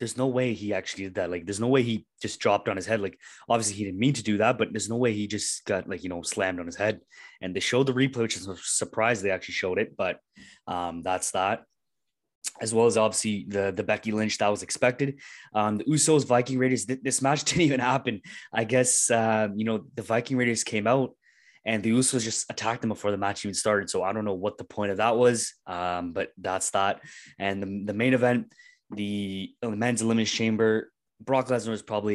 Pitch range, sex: 95-120 Hz, male